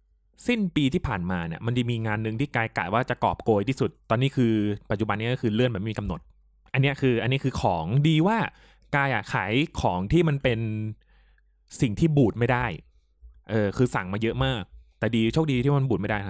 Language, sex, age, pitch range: Thai, male, 20-39, 95-135 Hz